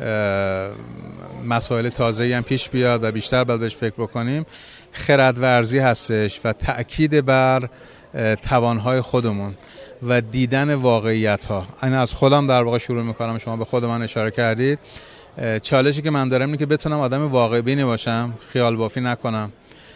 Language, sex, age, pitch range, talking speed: Persian, male, 30-49, 115-130 Hz, 145 wpm